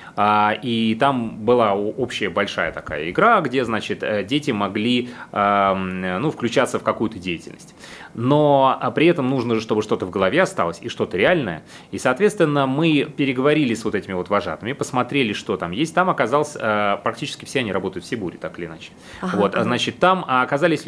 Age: 30-49